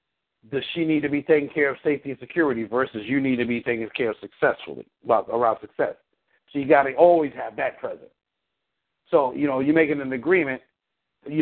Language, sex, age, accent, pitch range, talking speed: English, male, 50-69, American, 125-150 Hz, 205 wpm